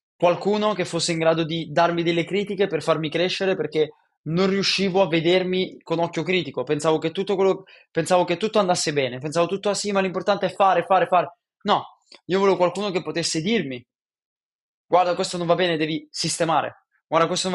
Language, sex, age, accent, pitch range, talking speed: Italian, male, 20-39, native, 165-195 Hz, 190 wpm